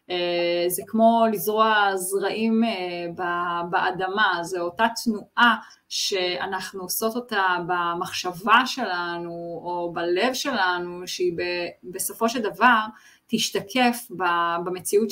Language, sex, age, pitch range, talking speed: Hebrew, female, 30-49, 180-230 Hz, 105 wpm